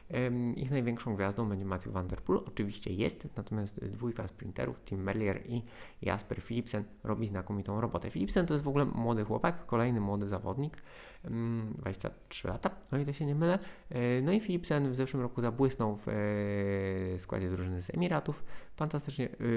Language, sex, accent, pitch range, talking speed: Polish, male, native, 105-150 Hz, 150 wpm